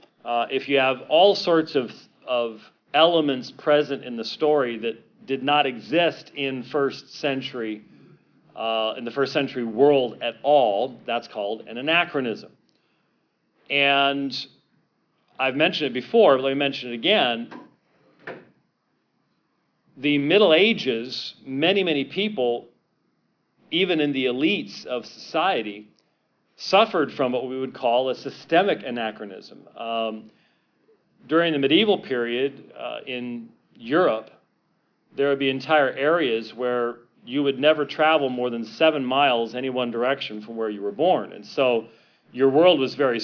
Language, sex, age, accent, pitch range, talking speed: English, male, 40-59, American, 120-145 Hz, 135 wpm